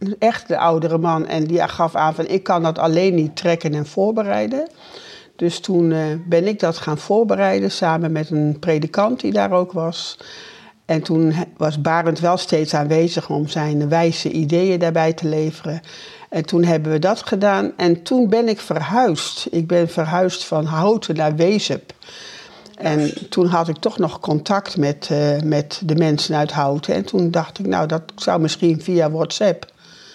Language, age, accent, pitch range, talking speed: Dutch, 60-79, Dutch, 155-190 Hz, 175 wpm